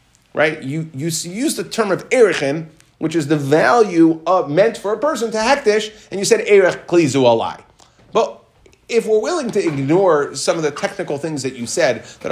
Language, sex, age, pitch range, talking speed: English, male, 30-49, 150-210 Hz, 195 wpm